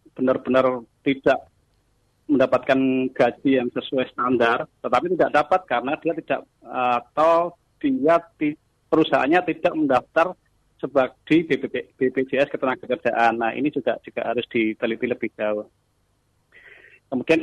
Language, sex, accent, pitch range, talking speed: Indonesian, male, native, 120-145 Hz, 105 wpm